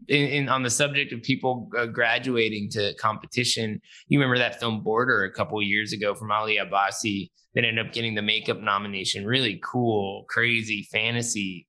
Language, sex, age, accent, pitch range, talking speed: English, male, 20-39, American, 105-125 Hz, 160 wpm